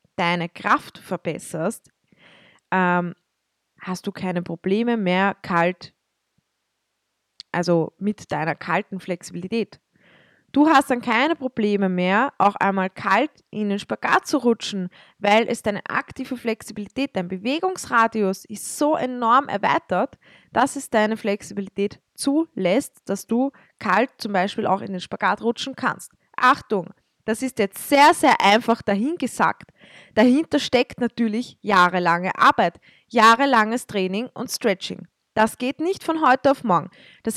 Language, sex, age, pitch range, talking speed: German, female, 20-39, 195-255 Hz, 130 wpm